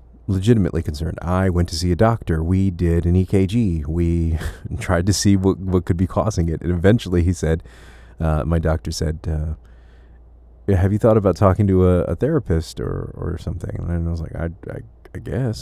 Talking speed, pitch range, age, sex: 195 wpm, 80-95 Hz, 40-59, male